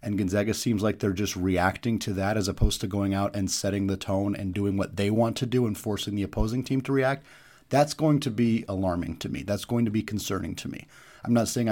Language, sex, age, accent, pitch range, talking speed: English, male, 30-49, American, 100-125 Hz, 250 wpm